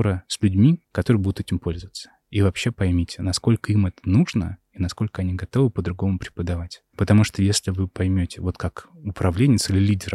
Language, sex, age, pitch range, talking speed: Russian, male, 20-39, 90-105 Hz, 170 wpm